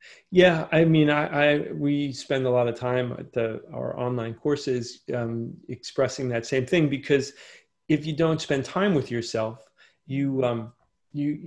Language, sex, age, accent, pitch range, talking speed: English, male, 30-49, American, 120-150 Hz, 175 wpm